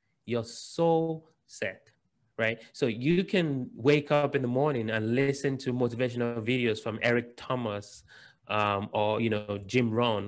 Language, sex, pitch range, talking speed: English, male, 110-145 Hz, 150 wpm